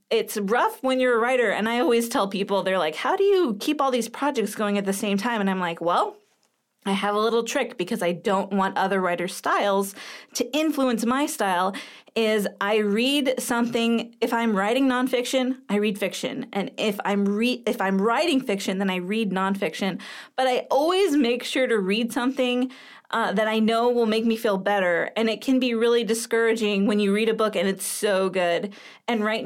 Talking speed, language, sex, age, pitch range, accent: 210 wpm, English, female, 20-39, 200-245 Hz, American